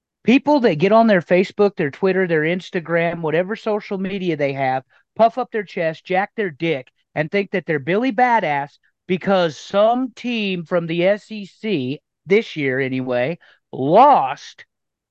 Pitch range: 155-215 Hz